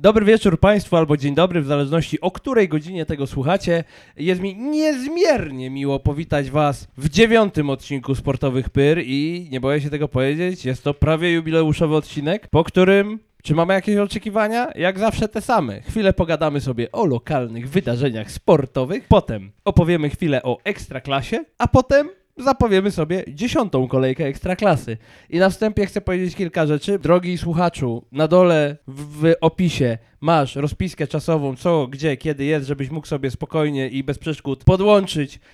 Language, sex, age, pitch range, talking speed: Polish, male, 20-39, 140-185 Hz, 155 wpm